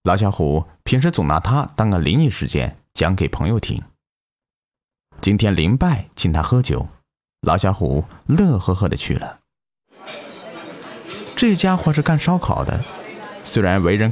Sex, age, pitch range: male, 30-49, 85-130 Hz